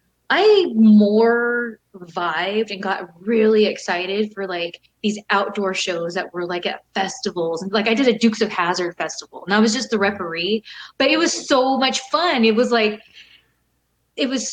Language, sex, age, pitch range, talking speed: English, female, 20-39, 190-225 Hz, 175 wpm